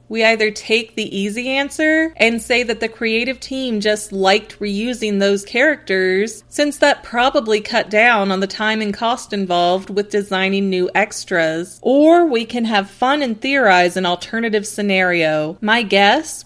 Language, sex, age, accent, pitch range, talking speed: English, female, 30-49, American, 190-230 Hz, 160 wpm